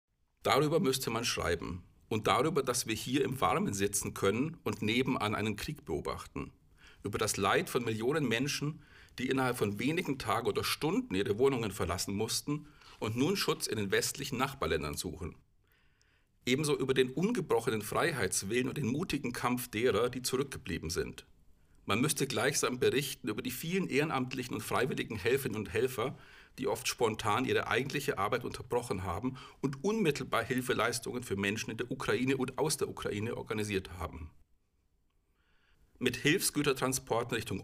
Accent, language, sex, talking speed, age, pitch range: German, German, male, 150 wpm, 50-69, 95-135 Hz